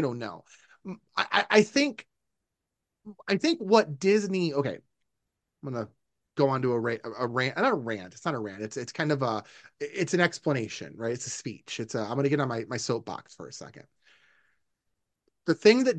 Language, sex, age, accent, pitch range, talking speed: English, male, 30-49, American, 130-175 Hz, 205 wpm